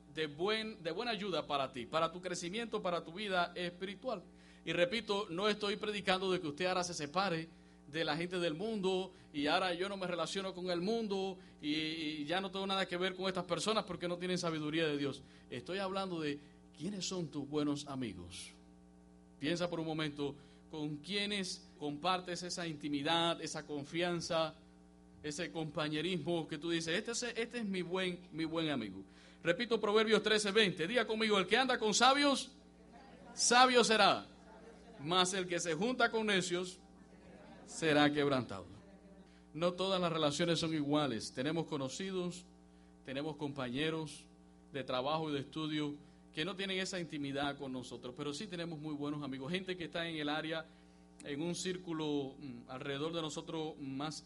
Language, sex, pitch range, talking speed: English, male, 145-185 Hz, 165 wpm